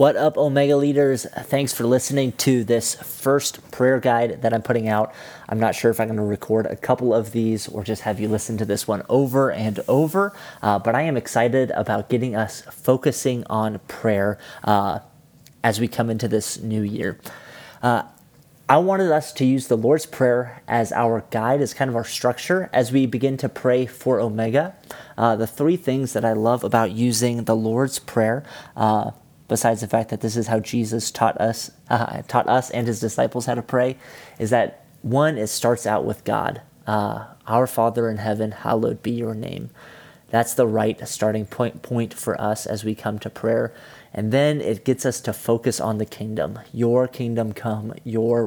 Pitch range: 110-130 Hz